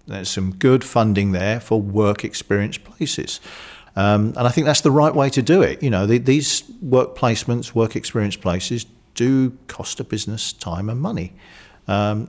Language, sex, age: English, male, 50-69